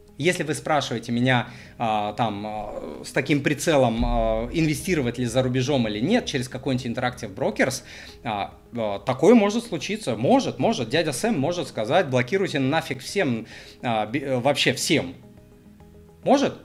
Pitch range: 110-145 Hz